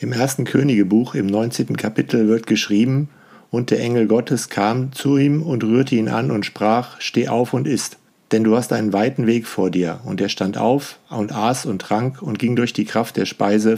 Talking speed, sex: 210 wpm, male